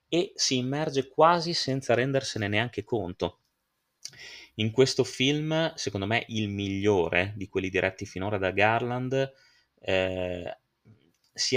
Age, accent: 30-49, native